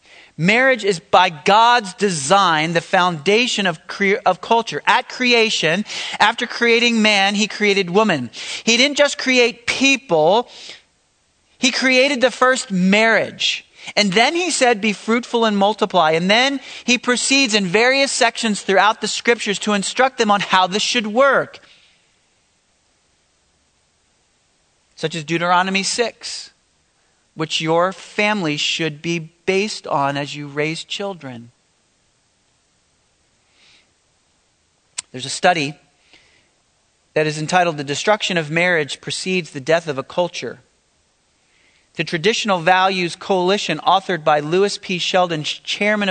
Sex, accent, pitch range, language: male, American, 160-220 Hz, English